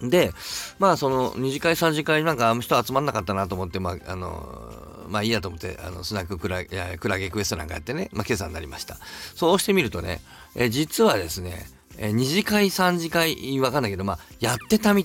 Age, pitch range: 40-59, 95-140 Hz